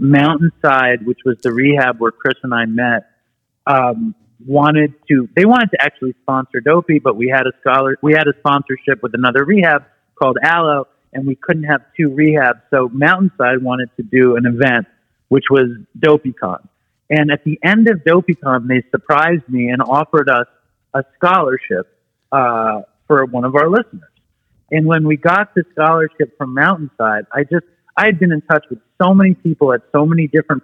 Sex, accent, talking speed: male, American, 180 wpm